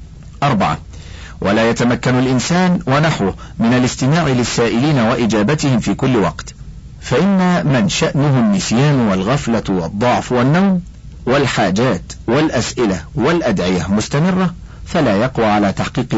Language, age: Arabic, 50-69